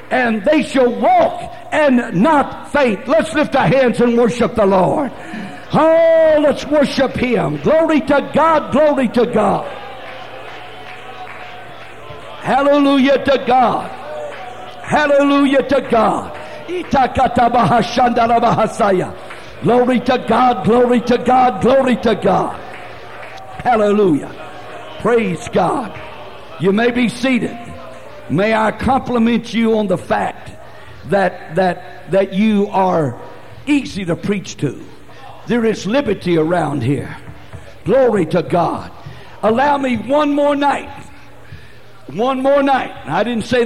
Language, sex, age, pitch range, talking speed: English, male, 60-79, 205-270 Hz, 115 wpm